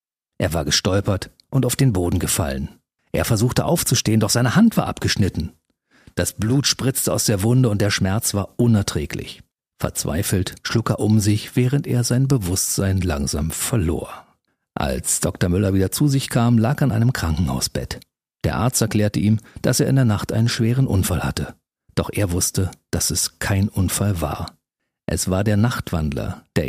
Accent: German